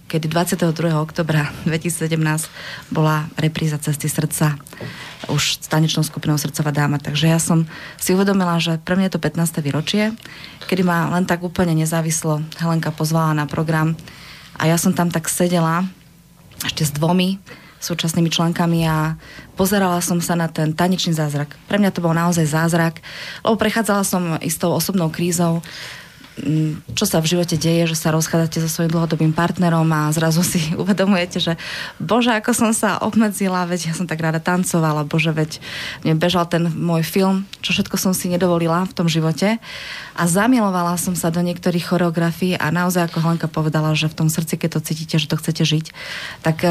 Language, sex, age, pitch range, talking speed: Slovak, female, 20-39, 160-180 Hz, 170 wpm